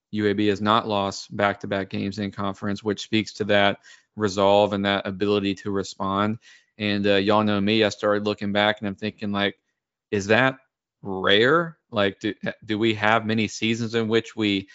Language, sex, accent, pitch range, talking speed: English, male, American, 100-110 Hz, 180 wpm